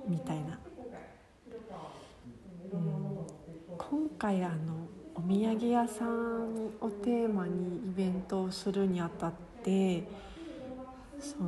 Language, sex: Japanese, female